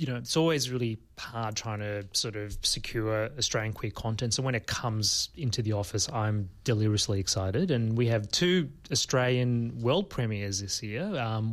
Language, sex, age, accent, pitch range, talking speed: English, male, 30-49, Australian, 110-125 Hz, 175 wpm